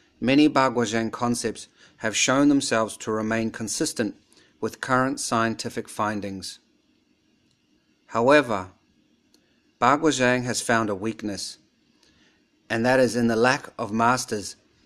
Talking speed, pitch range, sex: 110 wpm, 110-130 Hz, male